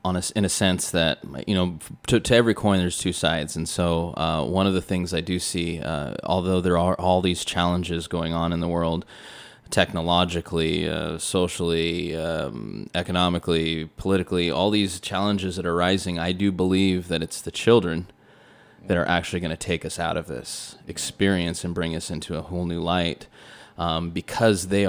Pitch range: 85-95 Hz